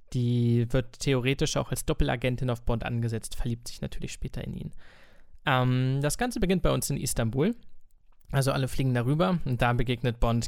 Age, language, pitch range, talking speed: 20-39, German, 120-140 Hz, 175 wpm